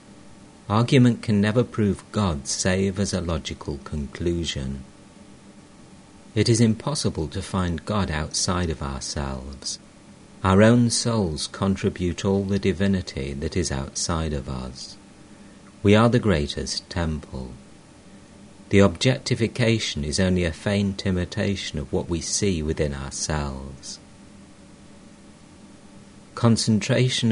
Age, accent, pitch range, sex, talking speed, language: 50-69, British, 75-100 Hz, male, 110 wpm, English